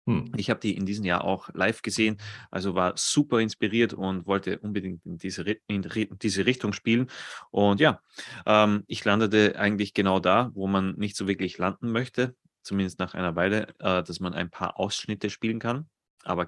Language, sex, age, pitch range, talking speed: German, male, 30-49, 95-120 Hz, 180 wpm